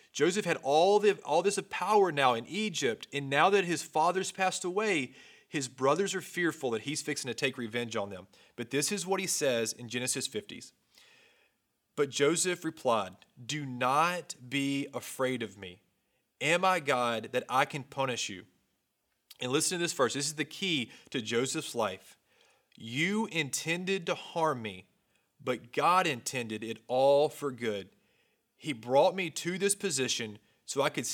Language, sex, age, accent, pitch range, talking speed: English, male, 30-49, American, 125-170 Hz, 170 wpm